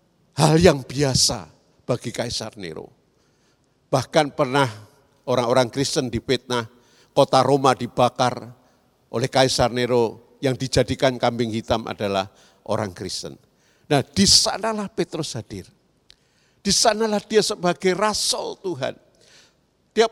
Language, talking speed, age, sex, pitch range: Indonesian, 105 wpm, 50-69, male, 130-215 Hz